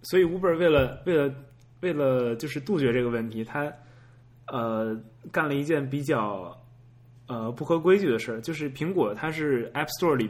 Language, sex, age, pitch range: Chinese, male, 20-39, 120-145 Hz